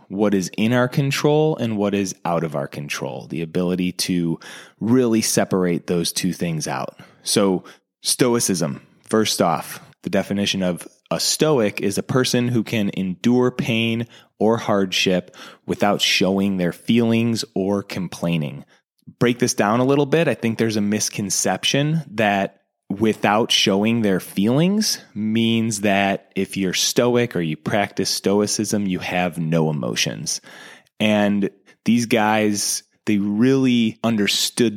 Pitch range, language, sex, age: 95-120 Hz, English, male, 20-39